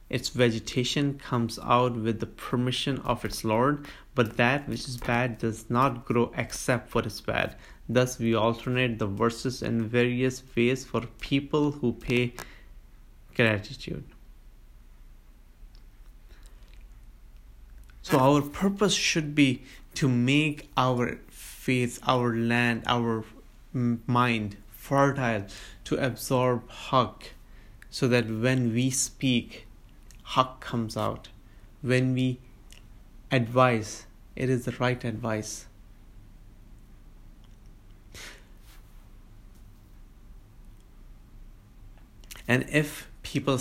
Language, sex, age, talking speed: English, male, 30-49, 100 wpm